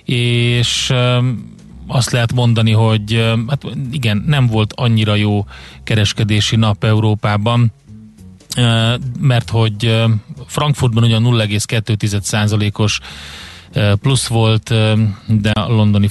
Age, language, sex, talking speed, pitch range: 30-49, Hungarian, male, 90 wpm, 105-125 Hz